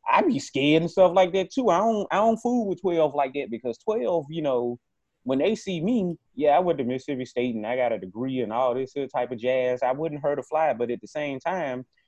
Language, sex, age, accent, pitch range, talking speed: English, male, 30-49, American, 120-165 Hz, 270 wpm